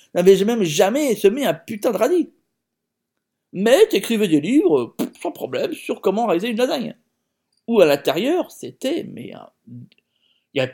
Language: French